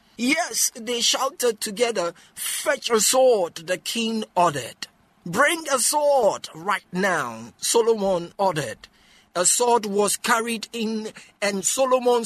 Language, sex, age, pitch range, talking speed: English, male, 50-69, 210-270 Hz, 115 wpm